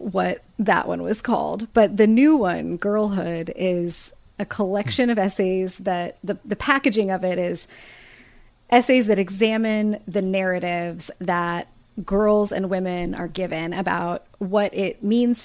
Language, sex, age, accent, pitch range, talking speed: English, female, 30-49, American, 175-210 Hz, 145 wpm